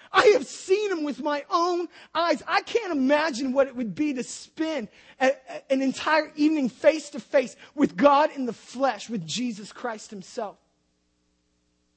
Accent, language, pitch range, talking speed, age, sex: American, English, 210-295 Hz, 150 wpm, 30-49, male